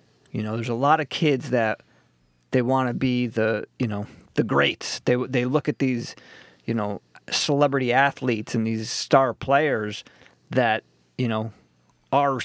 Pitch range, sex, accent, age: 110-140 Hz, male, American, 30-49